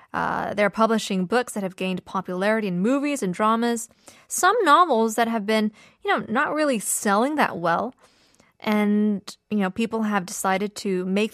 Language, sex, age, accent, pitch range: Korean, female, 20-39, American, 195-245 Hz